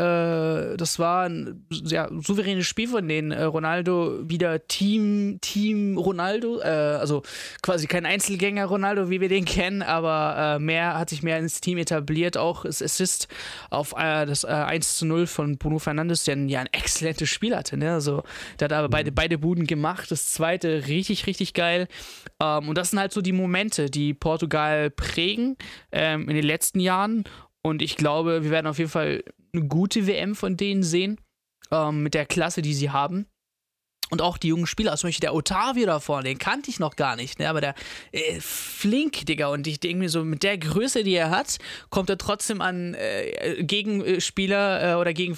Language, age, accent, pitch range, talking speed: German, 20-39, German, 155-195 Hz, 180 wpm